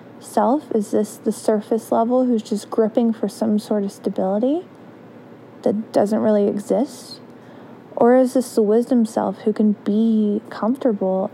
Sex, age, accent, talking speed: female, 20-39, American, 150 wpm